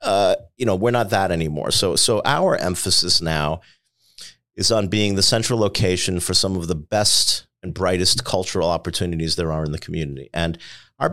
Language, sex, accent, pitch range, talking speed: English, male, American, 85-105 Hz, 185 wpm